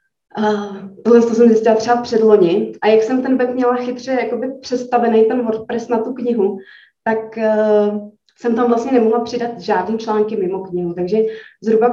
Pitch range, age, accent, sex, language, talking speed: 195-225 Hz, 20-39, native, female, Czech, 160 wpm